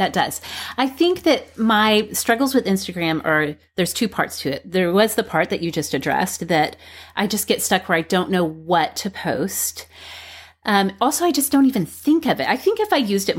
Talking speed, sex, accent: 225 wpm, female, American